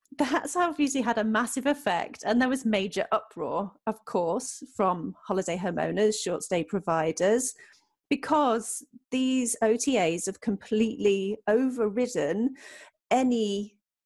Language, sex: English, female